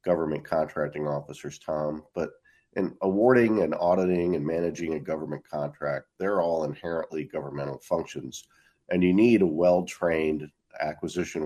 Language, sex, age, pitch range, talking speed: English, male, 50-69, 75-90 Hz, 130 wpm